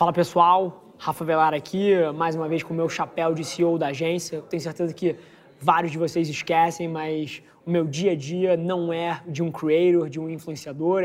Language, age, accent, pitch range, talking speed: Portuguese, 20-39, Brazilian, 165-180 Hz, 200 wpm